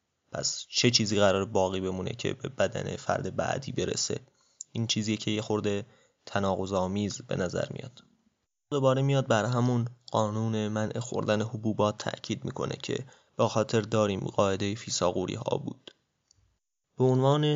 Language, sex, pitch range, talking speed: Persian, male, 110-125 Hz, 135 wpm